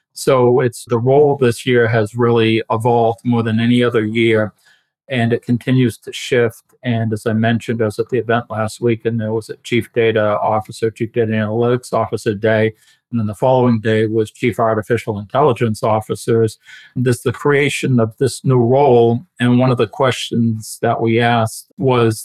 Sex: male